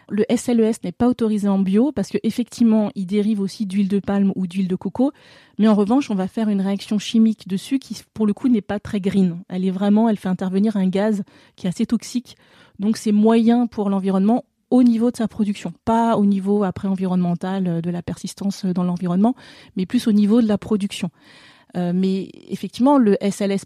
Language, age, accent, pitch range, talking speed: French, 30-49, French, 185-225 Hz, 205 wpm